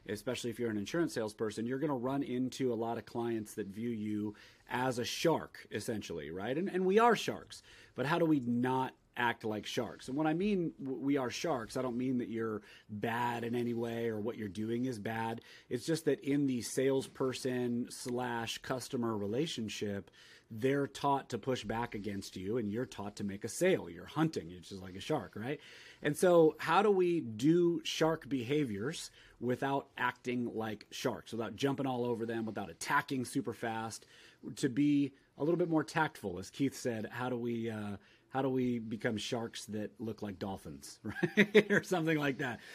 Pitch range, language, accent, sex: 115-150 Hz, English, American, male